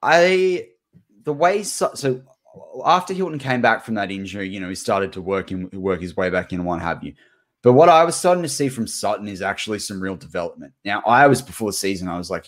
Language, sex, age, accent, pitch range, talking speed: English, male, 20-39, Australian, 95-125 Hz, 245 wpm